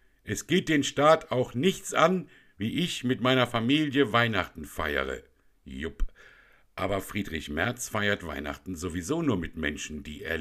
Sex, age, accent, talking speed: male, 60-79, German, 150 wpm